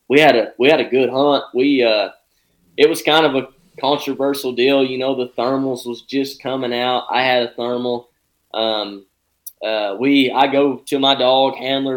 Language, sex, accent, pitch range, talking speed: English, male, American, 115-135 Hz, 190 wpm